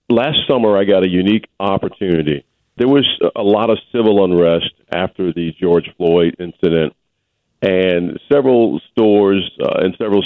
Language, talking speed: English, 145 wpm